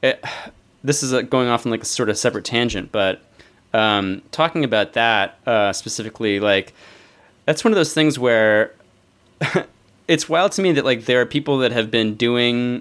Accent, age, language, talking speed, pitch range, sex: American, 20-39, English, 185 wpm, 105-130 Hz, male